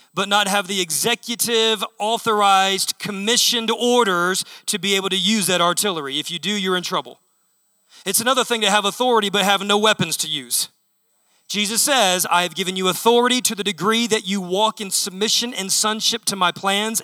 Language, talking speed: English, 185 wpm